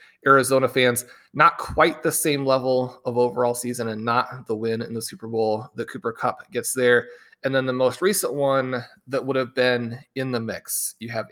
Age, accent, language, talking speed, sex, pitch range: 30-49, American, English, 200 wpm, male, 110-130 Hz